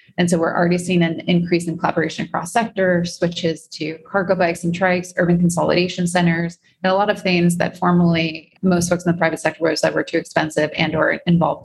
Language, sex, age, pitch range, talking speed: English, female, 20-39, 160-190 Hz, 210 wpm